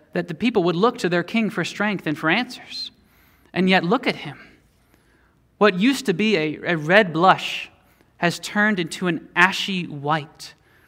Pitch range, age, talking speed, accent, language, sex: 160-200 Hz, 30-49, 175 wpm, American, English, male